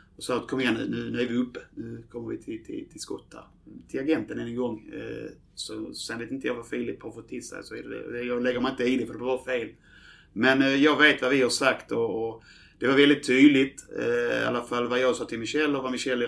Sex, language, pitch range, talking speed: male, Swedish, 125-160 Hz, 245 wpm